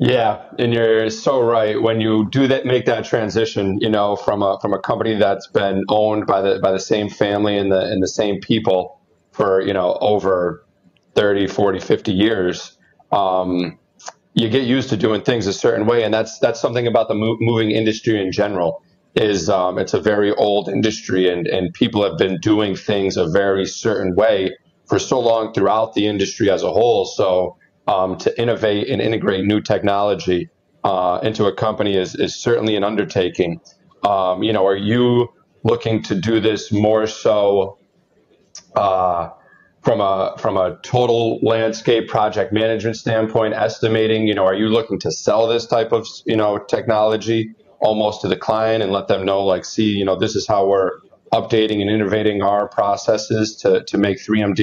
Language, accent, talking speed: English, American, 180 wpm